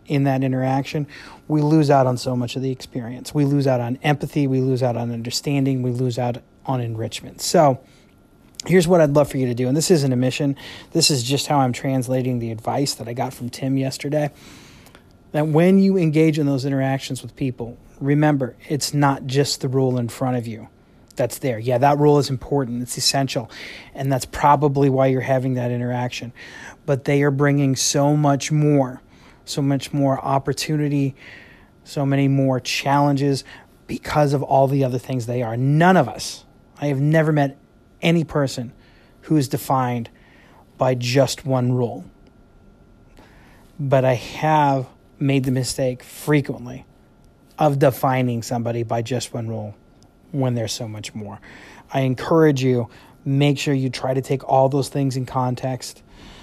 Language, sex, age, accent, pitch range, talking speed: English, male, 30-49, American, 125-145 Hz, 175 wpm